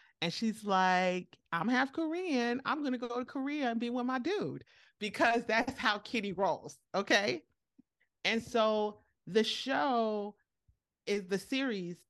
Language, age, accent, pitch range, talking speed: English, 30-49, American, 185-230 Hz, 150 wpm